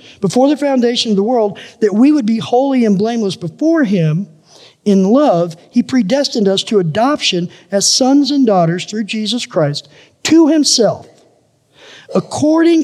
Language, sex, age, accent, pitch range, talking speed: English, male, 50-69, American, 180-260 Hz, 150 wpm